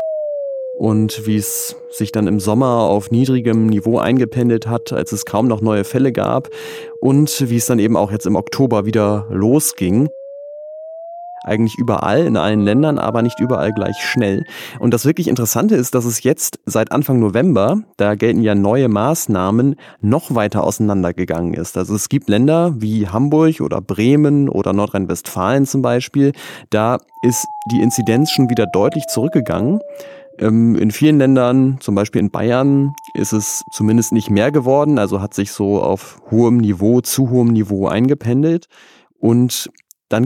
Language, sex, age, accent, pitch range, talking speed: German, male, 30-49, German, 110-145 Hz, 160 wpm